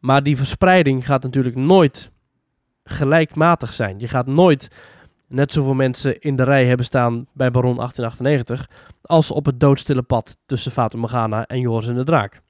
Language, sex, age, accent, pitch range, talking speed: Dutch, male, 20-39, Dutch, 125-165 Hz, 165 wpm